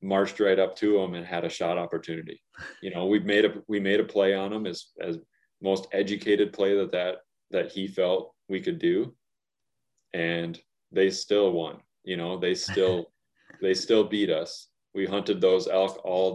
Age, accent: 30-49, American